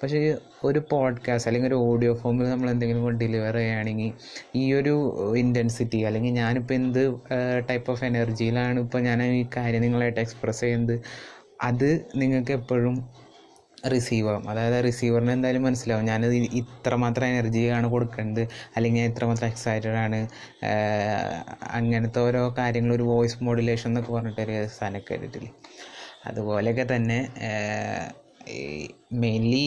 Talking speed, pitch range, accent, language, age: 110 wpm, 115-125 Hz, native, Malayalam, 20-39